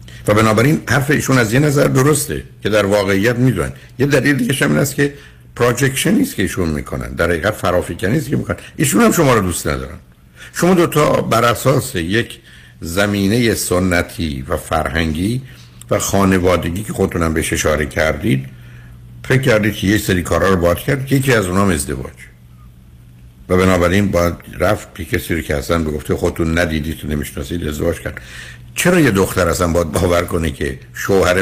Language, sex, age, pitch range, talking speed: Persian, male, 60-79, 80-115 Hz, 165 wpm